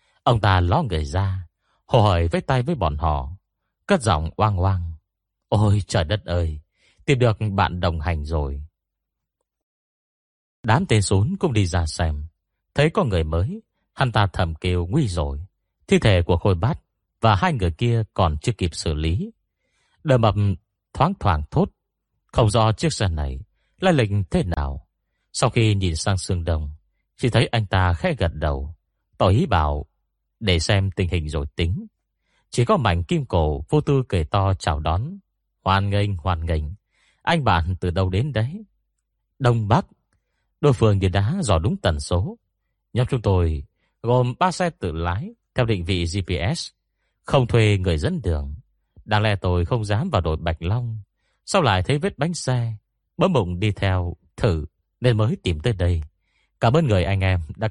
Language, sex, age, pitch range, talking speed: Vietnamese, male, 30-49, 85-115 Hz, 180 wpm